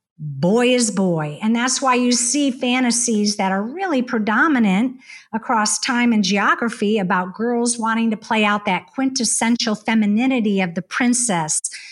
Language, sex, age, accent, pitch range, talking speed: English, female, 50-69, American, 205-255 Hz, 145 wpm